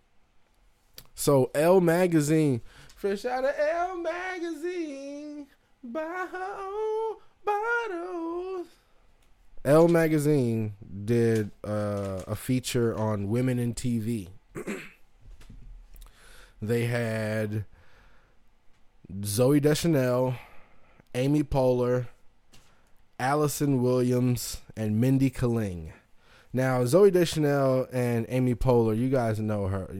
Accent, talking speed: American, 85 wpm